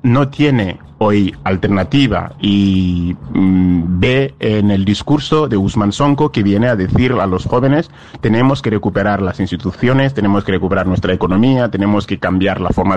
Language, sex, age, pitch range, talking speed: Spanish, male, 30-49, 95-125 Hz, 160 wpm